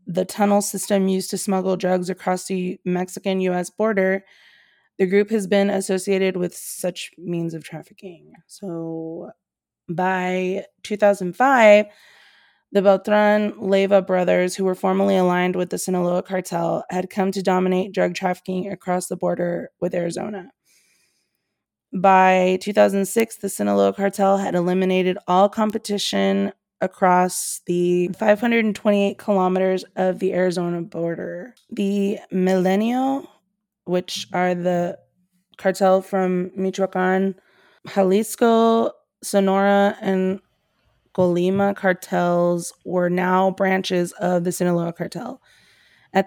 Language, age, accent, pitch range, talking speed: English, 20-39, American, 180-200 Hz, 110 wpm